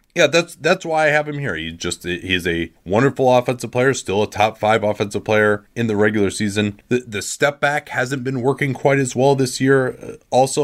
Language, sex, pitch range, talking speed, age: English, male, 100-130 Hz, 215 wpm, 30-49